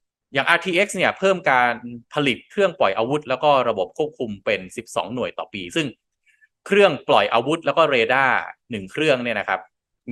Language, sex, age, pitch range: Thai, male, 20-39, 115-170 Hz